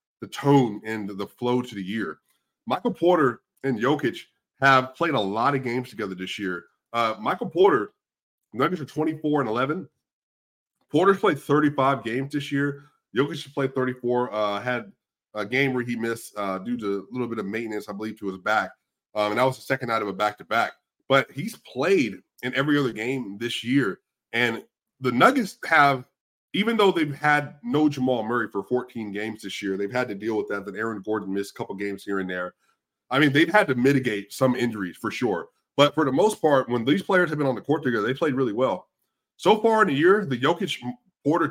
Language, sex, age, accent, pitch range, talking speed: English, male, 30-49, American, 110-145 Hz, 210 wpm